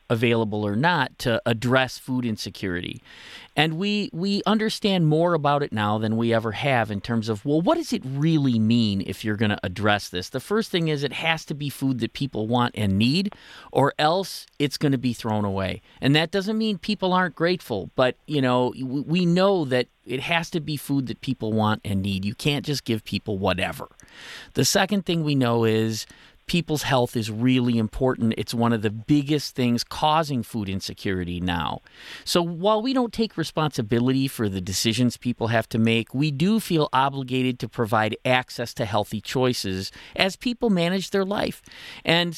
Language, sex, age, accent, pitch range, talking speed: English, male, 40-59, American, 115-165 Hz, 190 wpm